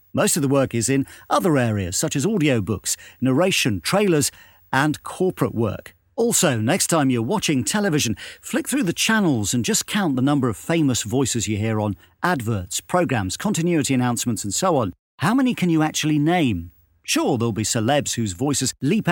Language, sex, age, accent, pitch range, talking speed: English, male, 50-69, British, 105-170 Hz, 180 wpm